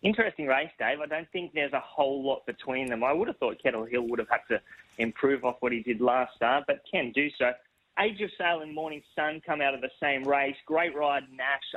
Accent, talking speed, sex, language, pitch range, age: Australian, 245 wpm, male, English, 135-165 Hz, 20-39